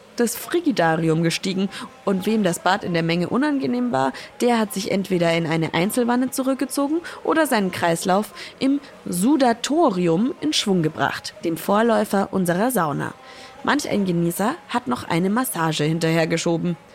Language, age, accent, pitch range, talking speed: German, 20-39, German, 165-255 Hz, 140 wpm